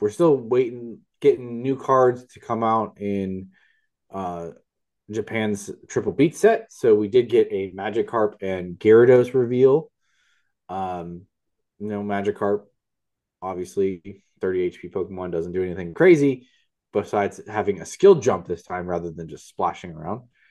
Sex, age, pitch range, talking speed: male, 20-39, 95-140 Hz, 145 wpm